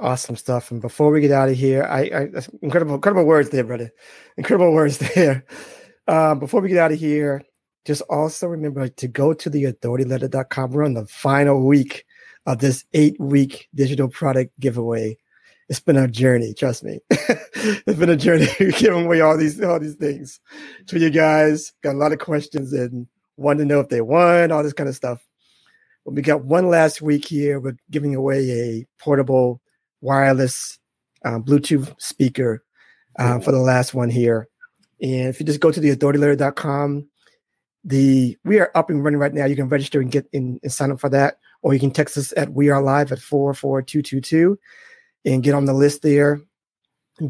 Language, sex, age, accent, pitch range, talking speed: English, male, 30-49, American, 130-155 Hz, 190 wpm